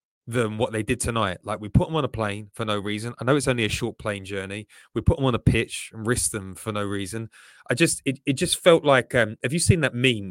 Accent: British